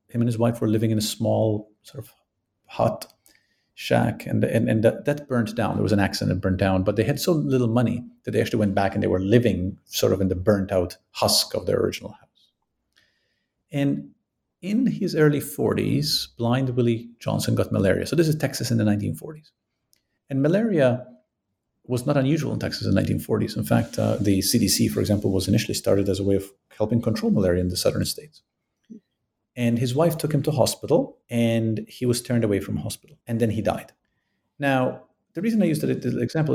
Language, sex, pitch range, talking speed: English, male, 105-130 Hz, 205 wpm